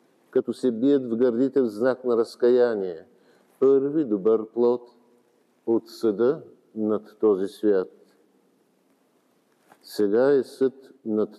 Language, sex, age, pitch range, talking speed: Bulgarian, male, 50-69, 120-140 Hz, 110 wpm